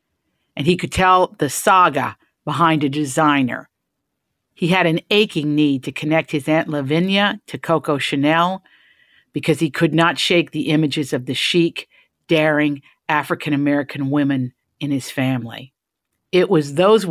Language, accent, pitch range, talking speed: English, American, 130-165 Hz, 145 wpm